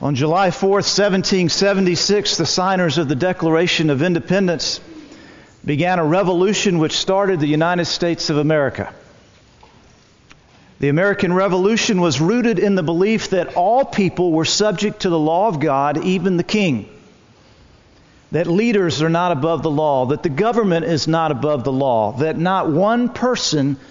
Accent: American